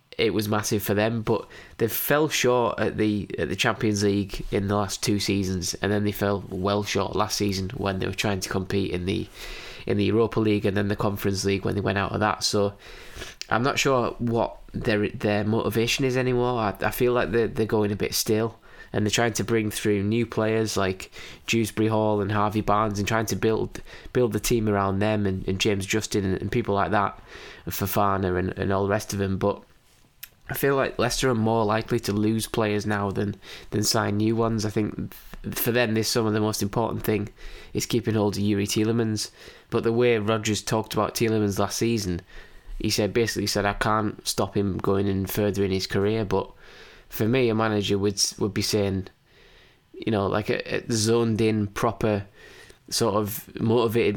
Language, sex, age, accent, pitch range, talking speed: English, male, 20-39, British, 100-110 Hz, 210 wpm